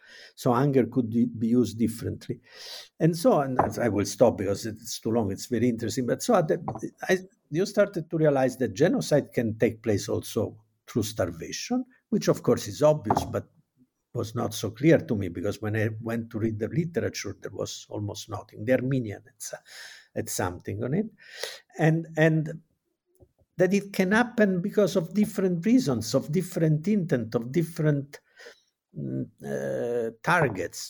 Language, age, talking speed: English, 50-69, 160 wpm